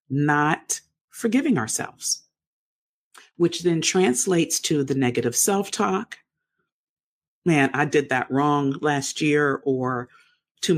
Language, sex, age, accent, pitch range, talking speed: English, female, 50-69, American, 140-180 Hz, 105 wpm